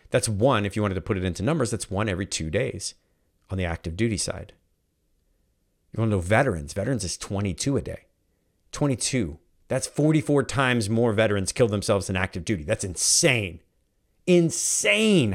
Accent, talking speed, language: American, 170 wpm, English